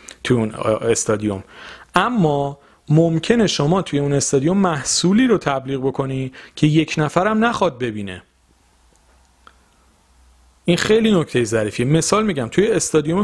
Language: Persian